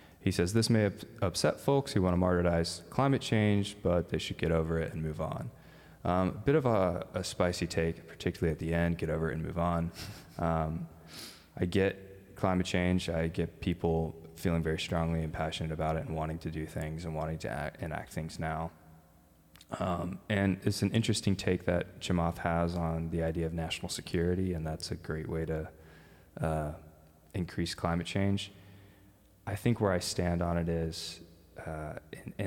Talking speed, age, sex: 185 wpm, 20-39, male